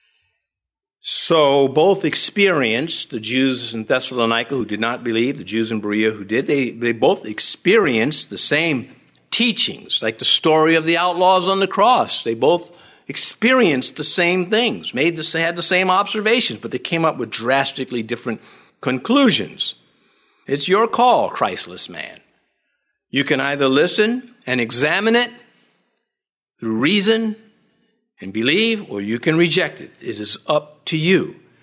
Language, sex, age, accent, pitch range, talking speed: English, male, 50-69, American, 125-195 Hz, 150 wpm